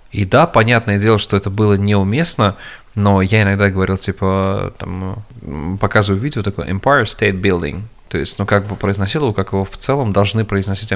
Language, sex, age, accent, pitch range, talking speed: Russian, male, 20-39, native, 100-115 Hz, 175 wpm